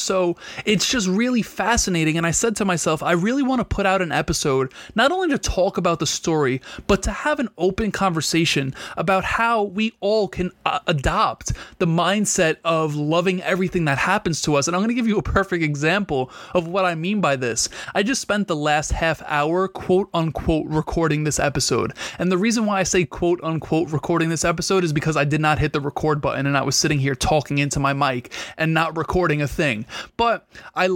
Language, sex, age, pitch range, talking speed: English, male, 20-39, 155-190 Hz, 210 wpm